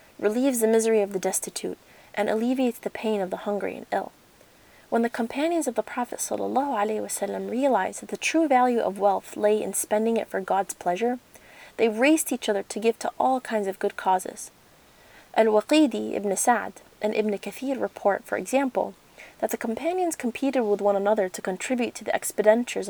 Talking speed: 180 wpm